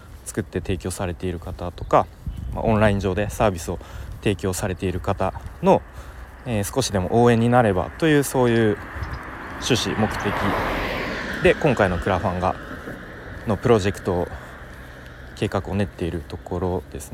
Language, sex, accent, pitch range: Japanese, male, native, 85-110 Hz